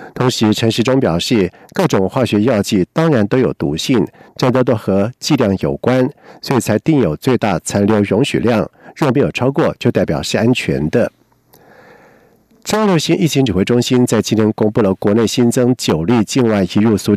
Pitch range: 105-130 Hz